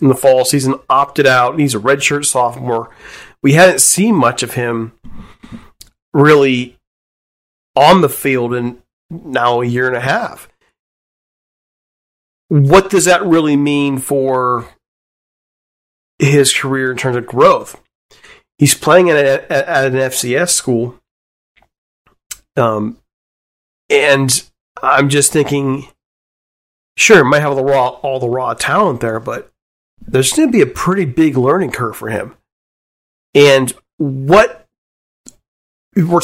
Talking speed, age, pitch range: 130 wpm, 40-59, 130-165 Hz